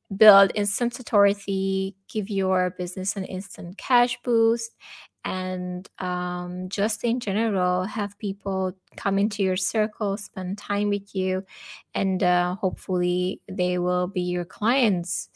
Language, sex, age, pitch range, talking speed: English, female, 20-39, 180-220 Hz, 130 wpm